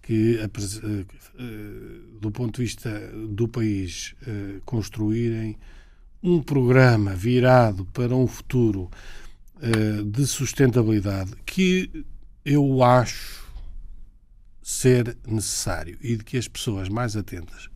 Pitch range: 100-125 Hz